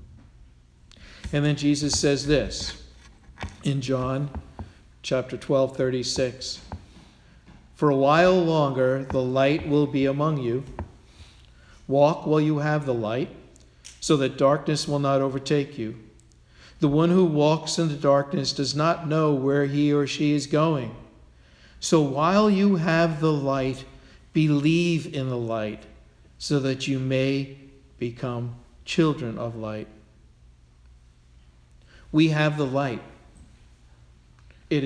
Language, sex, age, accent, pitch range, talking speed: English, male, 50-69, American, 110-150 Hz, 125 wpm